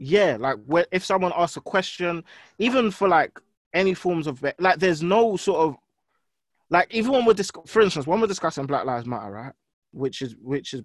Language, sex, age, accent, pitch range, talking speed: English, male, 20-39, British, 135-175 Hz, 205 wpm